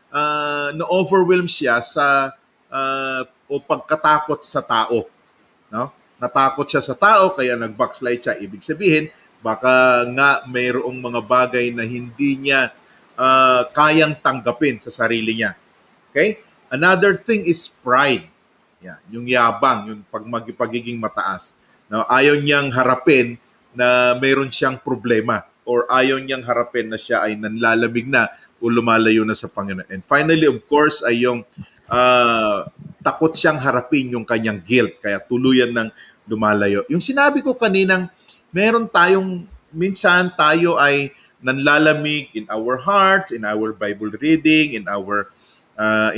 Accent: native